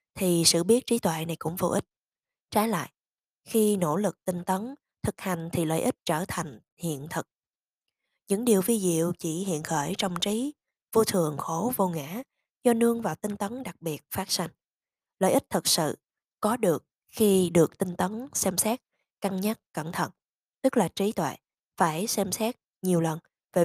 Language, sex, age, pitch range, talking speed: Vietnamese, female, 20-39, 170-210 Hz, 190 wpm